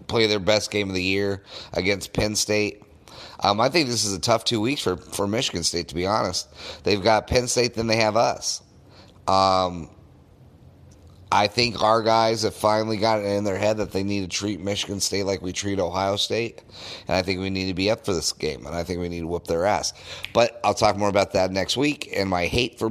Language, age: English, 30-49